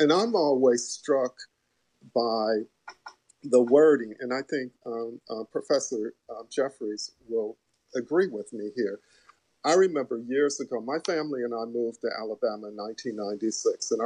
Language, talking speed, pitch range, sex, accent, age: English, 145 wpm, 115-145 Hz, male, American, 50-69